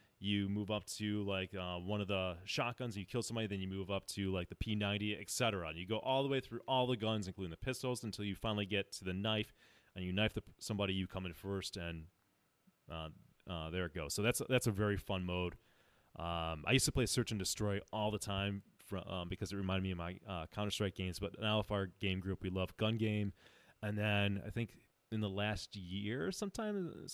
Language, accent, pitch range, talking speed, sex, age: English, American, 95-115 Hz, 240 wpm, male, 30-49